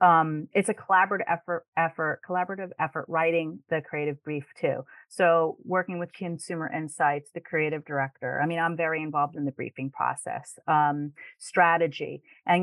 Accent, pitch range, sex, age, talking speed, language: American, 155-185 Hz, female, 30-49, 155 wpm, English